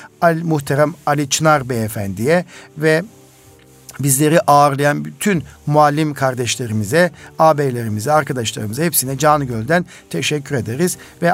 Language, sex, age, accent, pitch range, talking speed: Turkish, male, 60-79, native, 130-160 Hz, 95 wpm